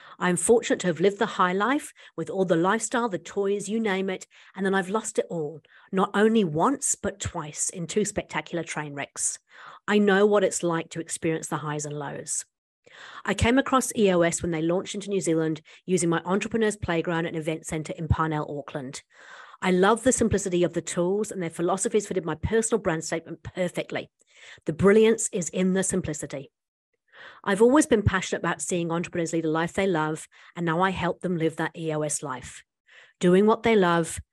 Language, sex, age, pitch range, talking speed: English, female, 40-59, 165-210 Hz, 195 wpm